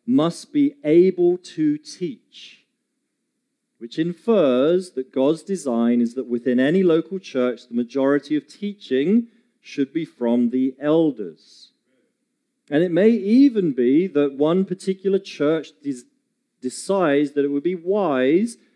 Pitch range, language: 130-205 Hz, English